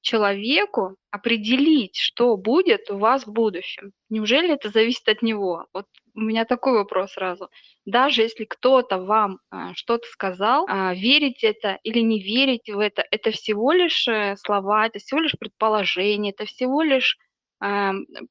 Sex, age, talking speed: female, 20-39, 145 wpm